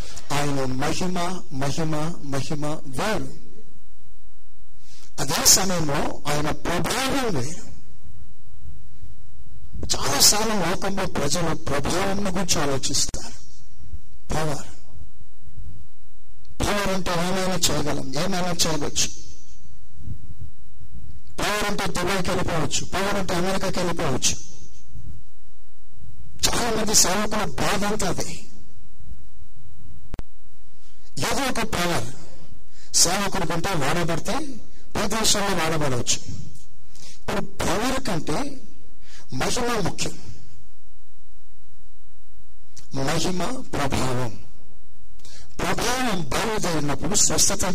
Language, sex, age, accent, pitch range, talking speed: Telugu, male, 60-79, native, 125-190 Hz, 65 wpm